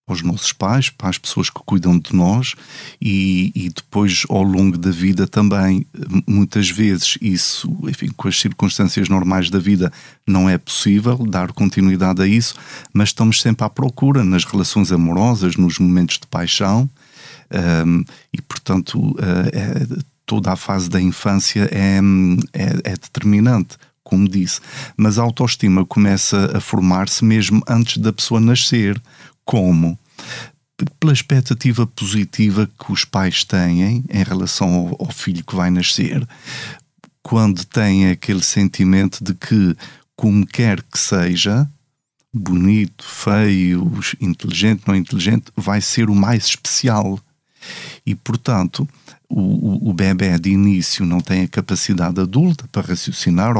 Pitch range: 95-115 Hz